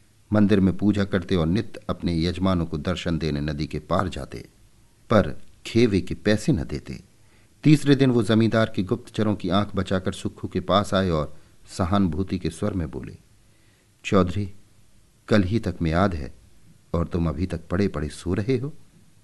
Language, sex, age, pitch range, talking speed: Hindi, male, 50-69, 90-115 Hz, 175 wpm